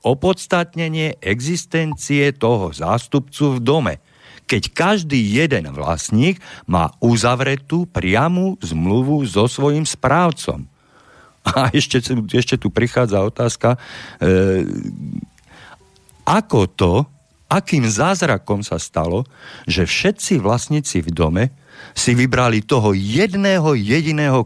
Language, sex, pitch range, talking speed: Slovak, male, 100-145 Hz, 100 wpm